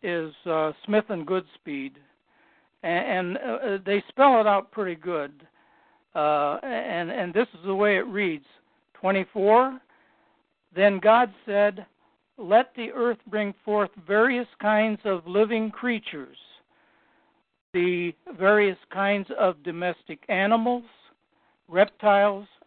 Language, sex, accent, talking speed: English, male, American, 115 wpm